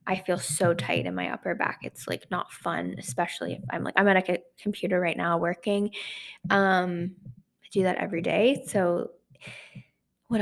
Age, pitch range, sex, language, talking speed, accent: 20-39, 170-200 Hz, female, English, 175 wpm, American